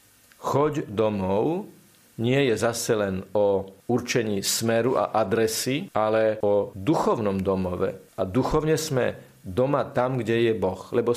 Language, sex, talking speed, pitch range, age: Slovak, male, 130 wpm, 110-135 Hz, 50-69